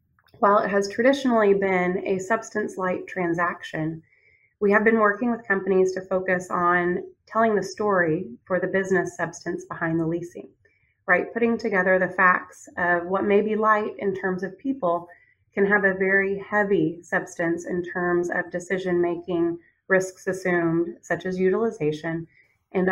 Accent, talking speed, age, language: American, 150 wpm, 30-49, English